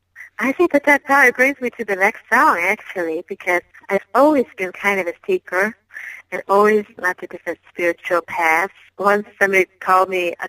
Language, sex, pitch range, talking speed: English, female, 175-205 Hz, 185 wpm